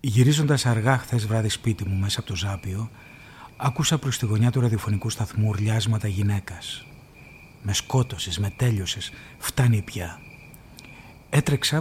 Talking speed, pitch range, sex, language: 130 wpm, 105-135 Hz, male, Greek